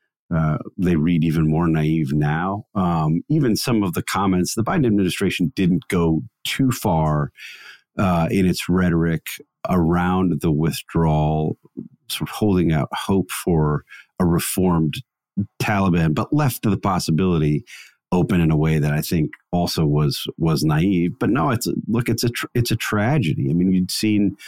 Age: 40-59